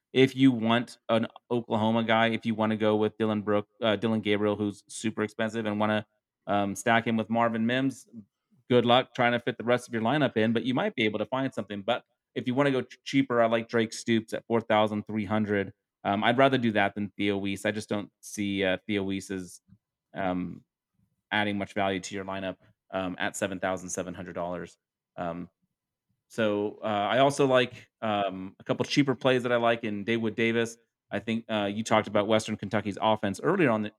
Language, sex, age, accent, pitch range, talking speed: English, male, 30-49, American, 100-115 Hz, 205 wpm